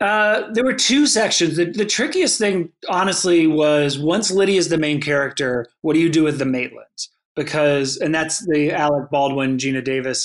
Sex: male